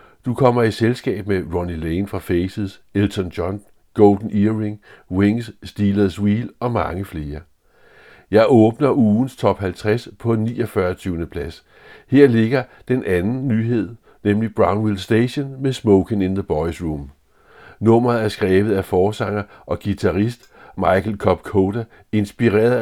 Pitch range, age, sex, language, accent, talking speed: 95-115 Hz, 60-79, male, Danish, native, 135 wpm